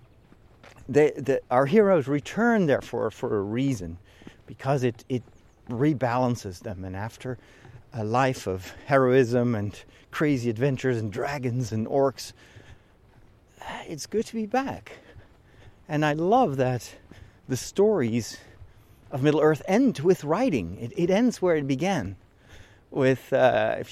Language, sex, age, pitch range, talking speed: English, male, 40-59, 110-145 Hz, 130 wpm